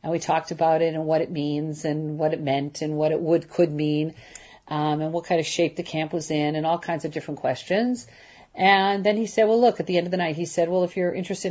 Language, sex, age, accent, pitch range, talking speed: English, female, 40-59, American, 145-175 Hz, 275 wpm